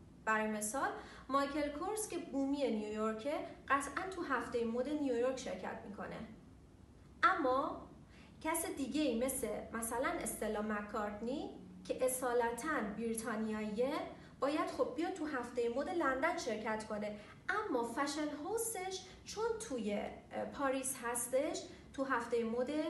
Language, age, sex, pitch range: Persian, 40-59, female, 225-315 Hz